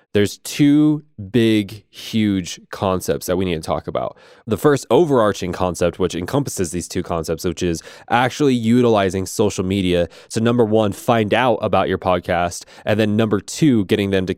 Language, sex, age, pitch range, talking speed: English, male, 20-39, 90-115 Hz, 170 wpm